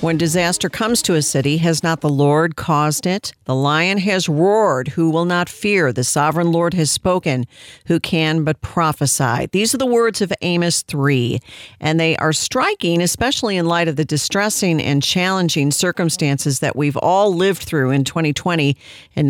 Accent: American